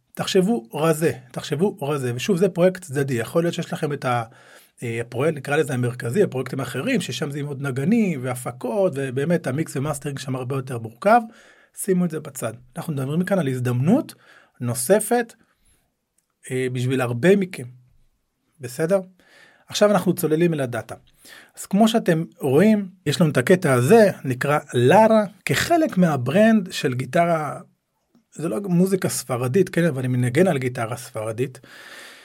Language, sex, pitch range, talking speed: Hebrew, male, 130-195 Hz, 145 wpm